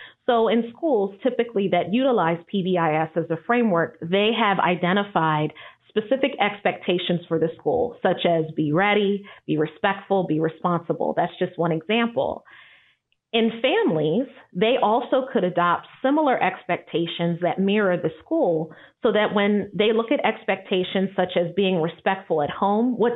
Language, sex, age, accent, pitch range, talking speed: English, female, 30-49, American, 170-225 Hz, 145 wpm